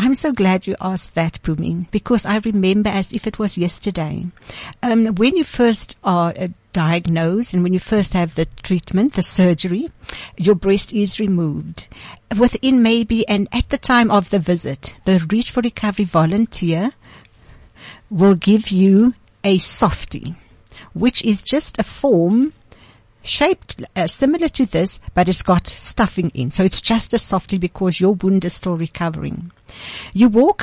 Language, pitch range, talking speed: English, 180-220 Hz, 160 wpm